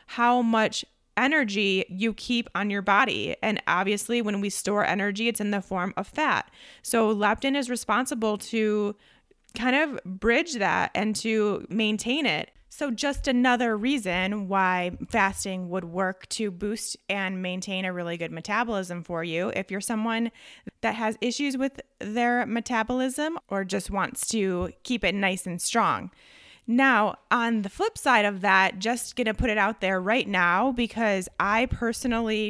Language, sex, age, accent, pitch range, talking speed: English, female, 20-39, American, 190-235 Hz, 160 wpm